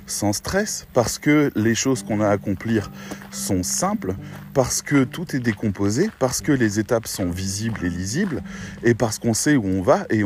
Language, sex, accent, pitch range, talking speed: French, male, French, 95-135 Hz, 195 wpm